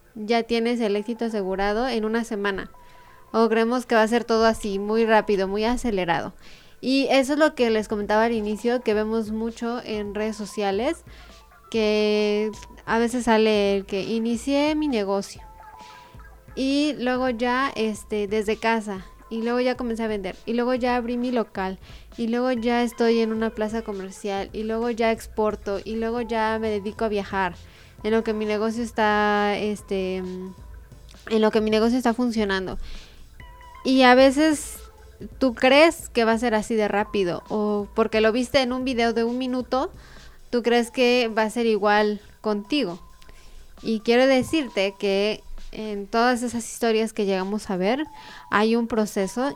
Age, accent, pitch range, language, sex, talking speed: 20-39, Mexican, 210-240 Hz, Spanish, female, 170 wpm